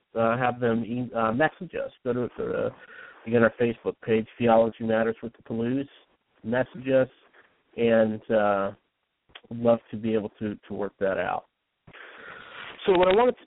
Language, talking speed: English, 170 wpm